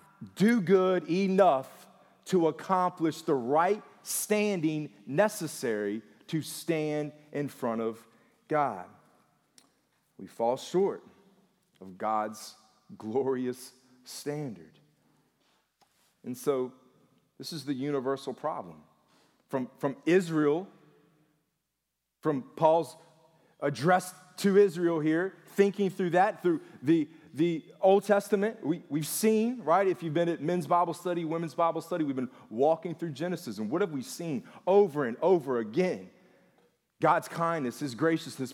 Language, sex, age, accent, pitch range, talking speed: English, male, 40-59, American, 130-180 Hz, 120 wpm